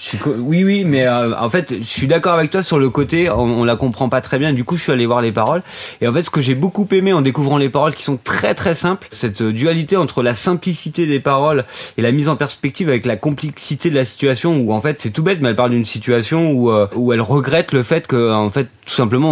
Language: French